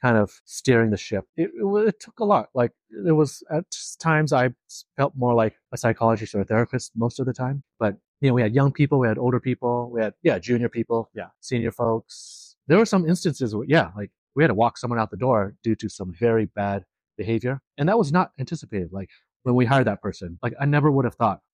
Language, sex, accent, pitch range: English, male, American, 105-135 Hz